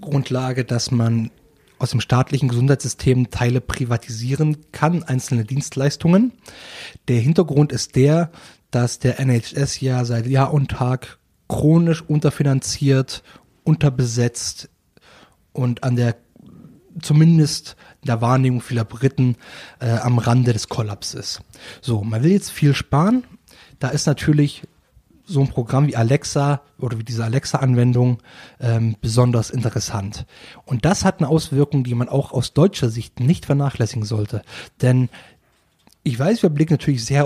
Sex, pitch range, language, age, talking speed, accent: male, 120-145 Hz, German, 30-49, 130 wpm, German